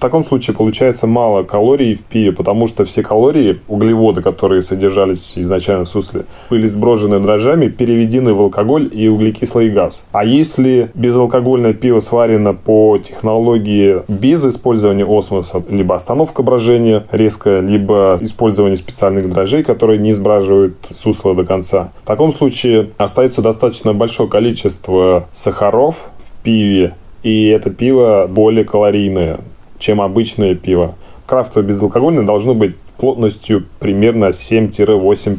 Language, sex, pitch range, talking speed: Russian, male, 95-115 Hz, 130 wpm